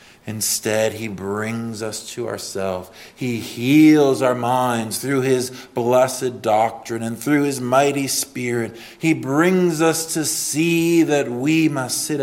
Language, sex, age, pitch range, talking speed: English, male, 50-69, 105-130 Hz, 135 wpm